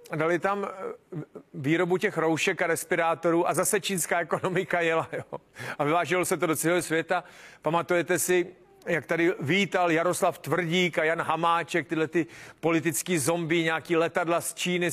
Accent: native